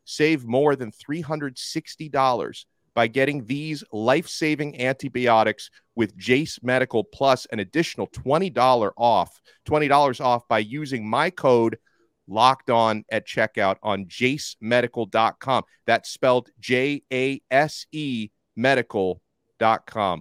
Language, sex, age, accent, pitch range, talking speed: English, male, 40-59, American, 110-135 Hz, 120 wpm